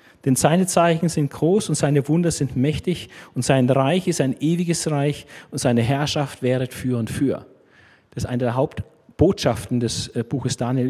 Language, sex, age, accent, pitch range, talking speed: German, male, 40-59, German, 125-165 Hz, 175 wpm